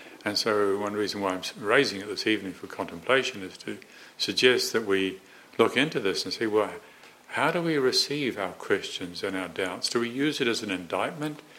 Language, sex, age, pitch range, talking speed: English, male, 60-79, 95-120 Hz, 200 wpm